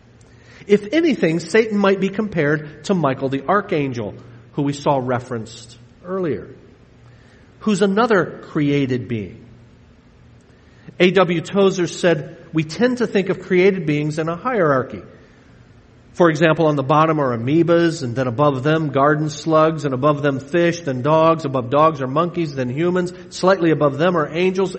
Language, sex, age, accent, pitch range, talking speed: English, male, 50-69, American, 125-180 Hz, 150 wpm